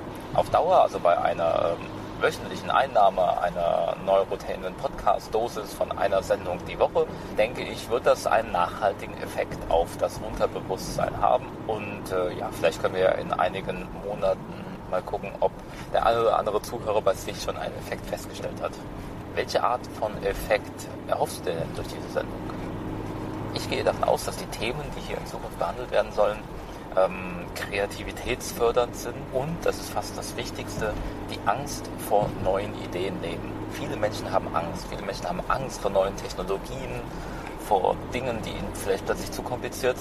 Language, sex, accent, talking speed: German, male, German, 160 wpm